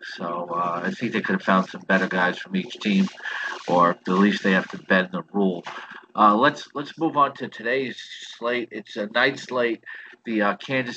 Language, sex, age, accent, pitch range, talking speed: English, male, 50-69, American, 105-130 Hz, 210 wpm